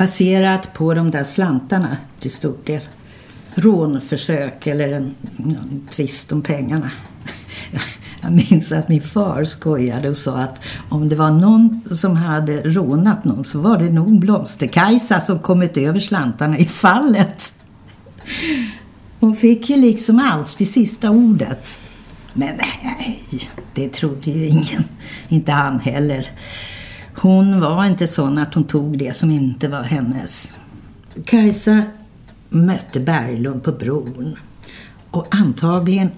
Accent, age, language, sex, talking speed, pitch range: native, 50-69, Swedish, female, 130 wpm, 140-195 Hz